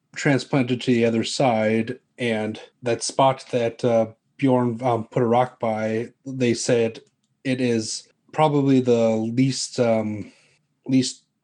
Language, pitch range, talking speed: English, 110-125 Hz, 130 wpm